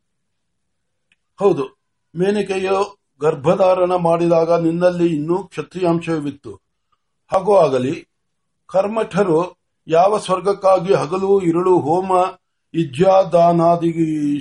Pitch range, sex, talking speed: 165-200 Hz, male, 45 wpm